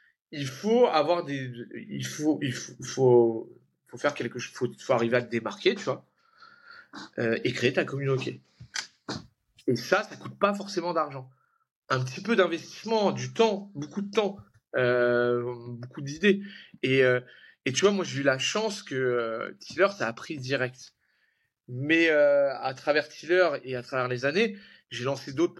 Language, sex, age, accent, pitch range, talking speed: French, male, 30-49, French, 130-185 Hz, 190 wpm